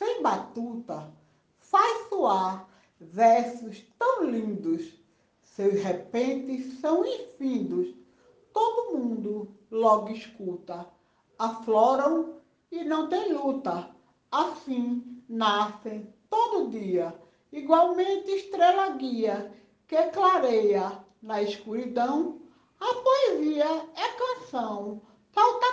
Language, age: Portuguese, 60-79